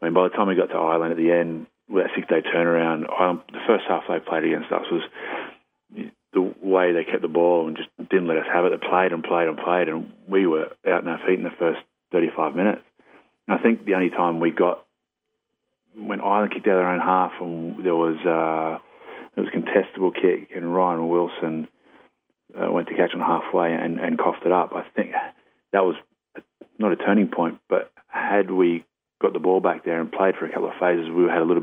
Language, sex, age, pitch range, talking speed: English, male, 30-49, 80-90 Hz, 230 wpm